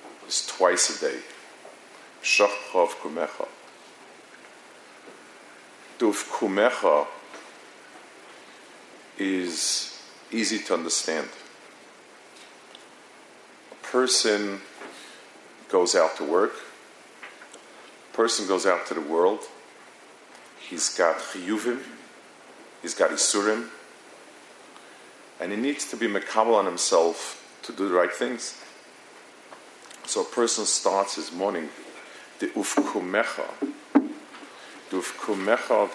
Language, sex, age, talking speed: English, male, 50-69, 90 wpm